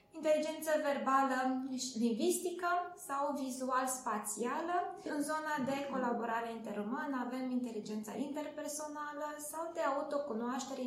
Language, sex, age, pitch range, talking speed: Romanian, female, 20-39, 235-295 Hz, 100 wpm